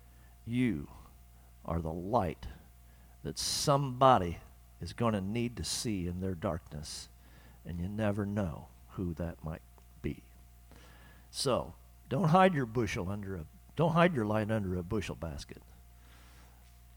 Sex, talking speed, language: male, 135 wpm, English